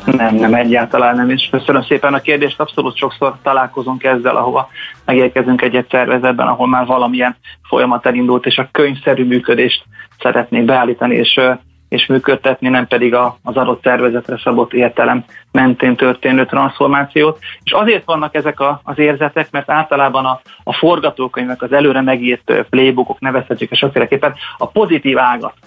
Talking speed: 145 wpm